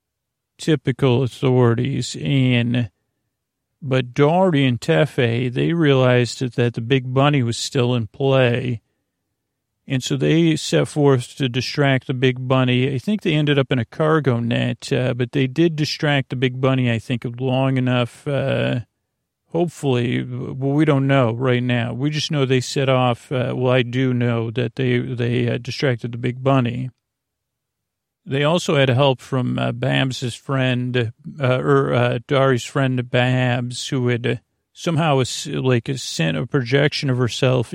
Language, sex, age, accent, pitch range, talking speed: English, male, 40-59, American, 120-135 Hz, 160 wpm